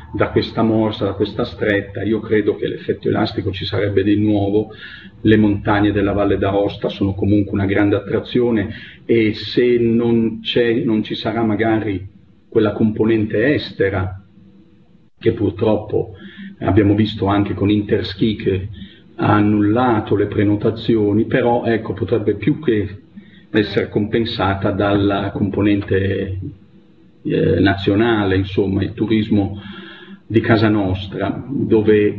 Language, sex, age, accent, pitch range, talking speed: Italian, male, 40-59, native, 100-115 Hz, 125 wpm